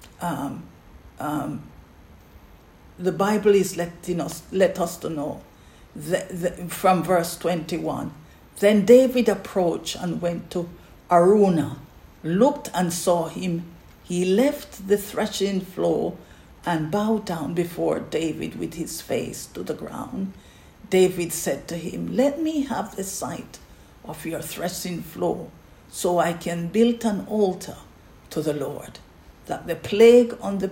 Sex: female